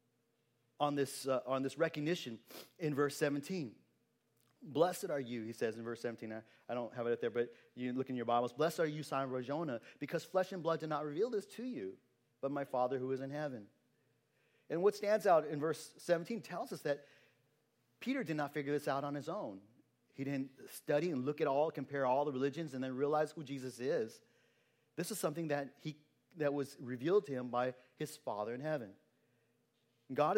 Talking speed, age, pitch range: 205 wpm, 30-49, 125-155 Hz